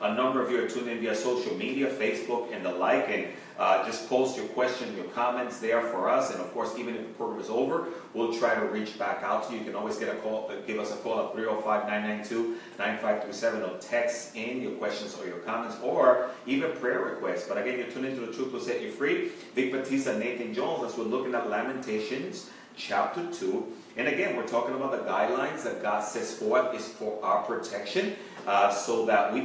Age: 30-49